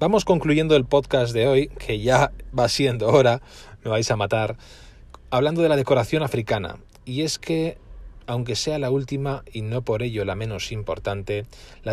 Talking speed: 175 wpm